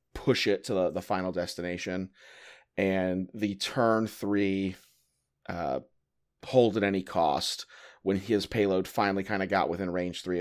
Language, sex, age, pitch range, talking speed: English, male, 30-49, 90-110 Hz, 150 wpm